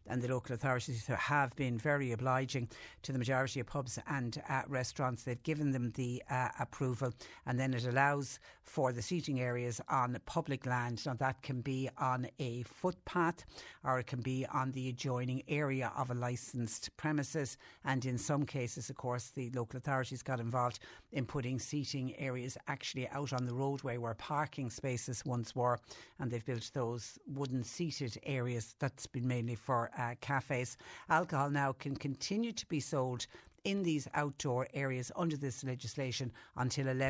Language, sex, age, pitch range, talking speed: English, female, 60-79, 120-140 Hz, 170 wpm